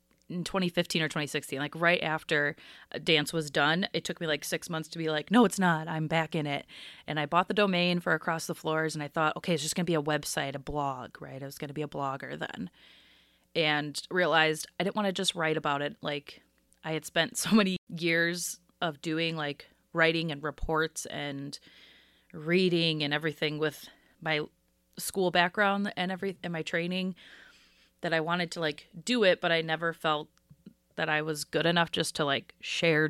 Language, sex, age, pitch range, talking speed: English, female, 30-49, 150-175 Hz, 200 wpm